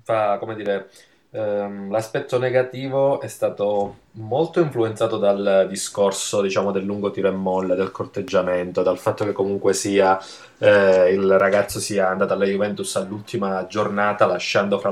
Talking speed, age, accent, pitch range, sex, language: 145 wpm, 20-39, native, 100-120 Hz, male, Italian